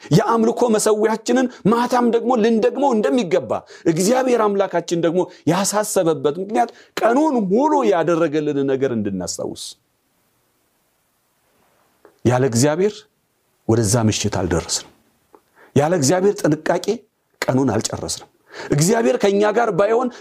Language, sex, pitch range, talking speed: Amharic, male, 135-220 Hz, 90 wpm